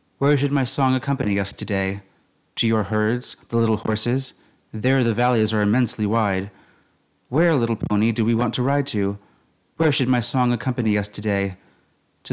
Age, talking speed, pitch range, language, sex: 30-49, 175 wpm, 105-130 Hz, English, male